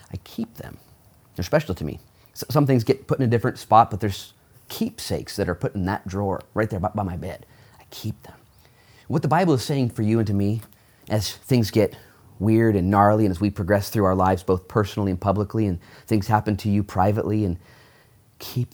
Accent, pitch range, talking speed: American, 100-130 Hz, 215 wpm